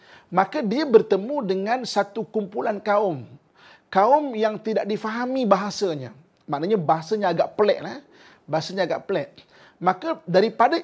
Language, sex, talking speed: Malay, male, 115 wpm